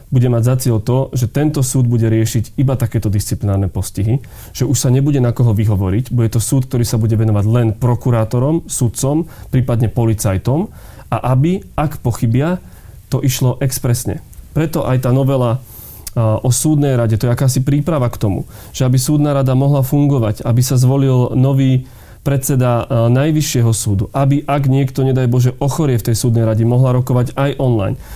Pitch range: 115-140 Hz